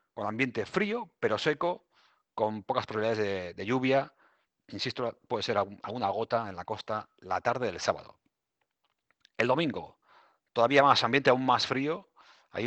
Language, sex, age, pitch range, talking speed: Spanish, male, 30-49, 105-135 Hz, 150 wpm